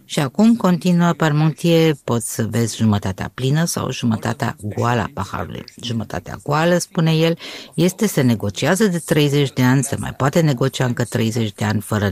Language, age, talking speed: Romanian, 50-69, 170 wpm